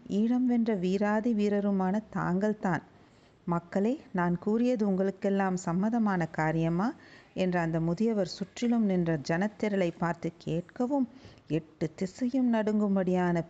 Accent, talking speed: native, 100 wpm